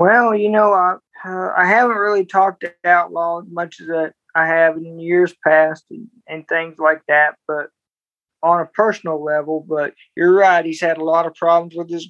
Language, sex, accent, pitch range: English, male, American, 165-195 Hz